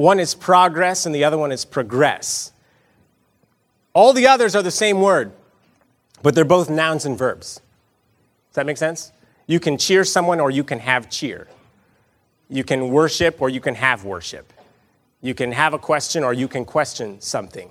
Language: English